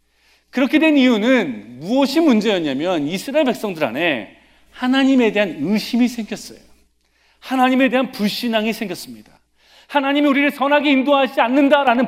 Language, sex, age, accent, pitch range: Korean, male, 40-59, native, 170-260 Hz